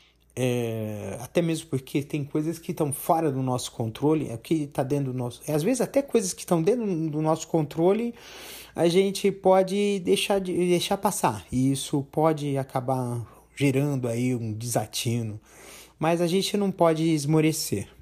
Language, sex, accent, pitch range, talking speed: Portuguese, male, Brazilian, 125-175 Hz, 165 wpm